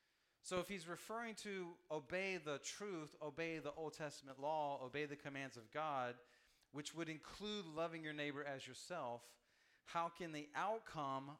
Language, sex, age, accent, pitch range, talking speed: English, male, 40-59, American, 135-175 Hz, 160 wpm